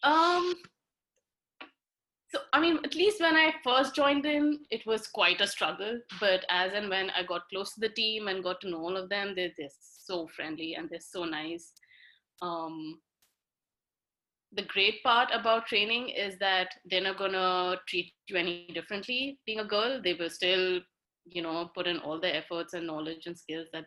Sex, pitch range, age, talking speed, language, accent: female, 160-215 Hz, 20-39, 190 wpm, English, Indian